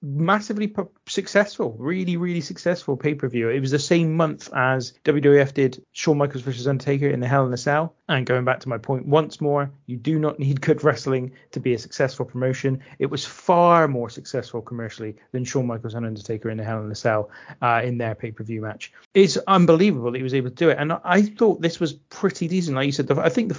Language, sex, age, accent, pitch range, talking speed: English, male, 30-49, British, 130-175 Hz, 230 wpm